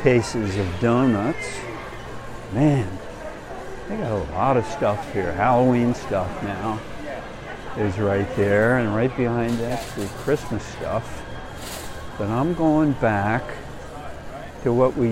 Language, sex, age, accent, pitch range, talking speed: English, male, 60-79, American, 95-125 Hz, 125 wpm